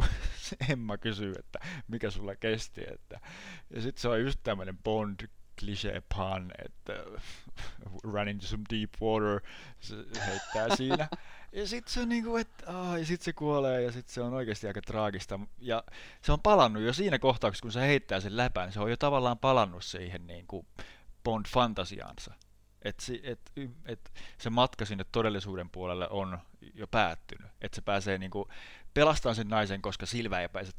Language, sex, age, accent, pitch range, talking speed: Finnish, male, 30-49, native, 95-115 Hz, 175 wpm